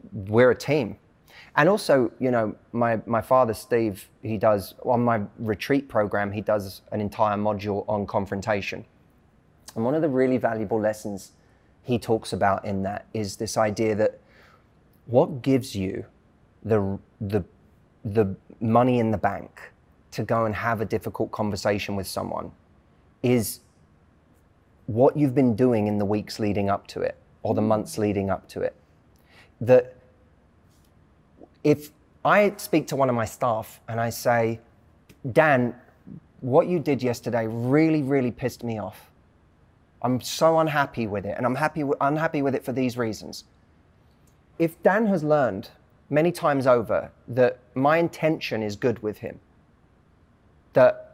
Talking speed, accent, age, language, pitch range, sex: 155 wpm, British, 20-39, English, 105-130 Hz, male